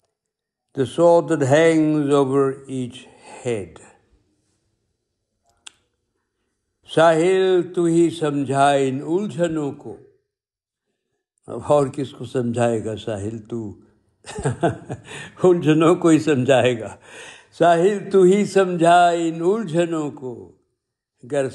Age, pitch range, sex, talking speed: 60-79, 110-150 Hz, male, 85 wpm